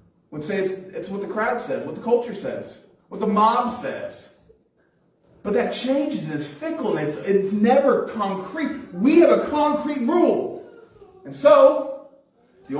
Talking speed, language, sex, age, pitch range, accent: 160 wpm, English, male, 30-49, 190-270 Hz, American